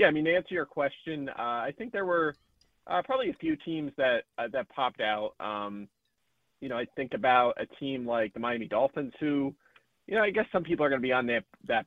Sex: male